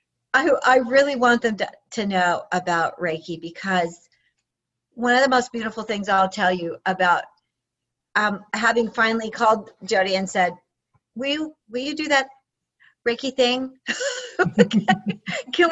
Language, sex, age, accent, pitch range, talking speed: English, female, 50-69, American, 200-260 Hz, 145 wpm